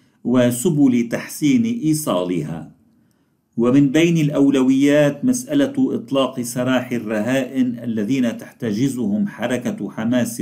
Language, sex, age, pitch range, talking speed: Arabic, male, 50-69, 120-160 Hz, 80 wpm